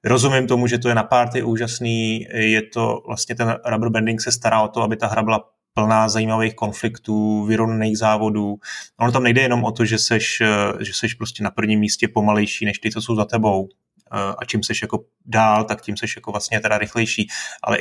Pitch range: 105-120 Hz